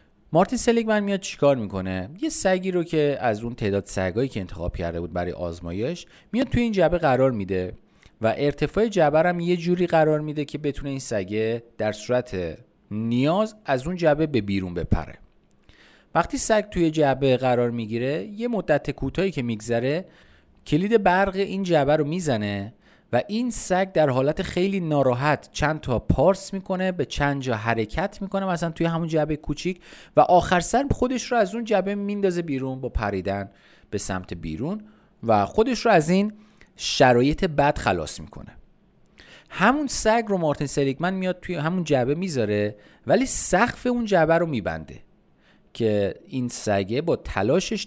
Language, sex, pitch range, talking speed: Persian, male, 115-185 Hz, 160 wpm